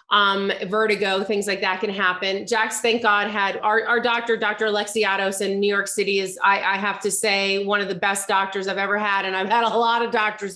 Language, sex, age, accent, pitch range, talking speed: English, female, 30-49, American, 205-255 Hz, 235 wpm